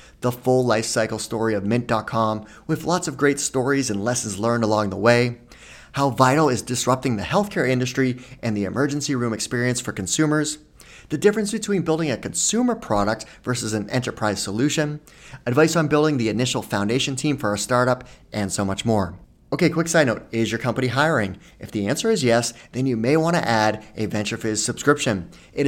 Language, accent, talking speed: English, American, 185 wpm